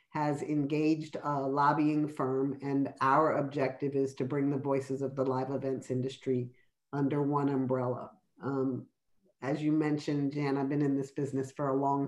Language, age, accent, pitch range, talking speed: English, 50-69, American, 140-160 Hz, 170 wpm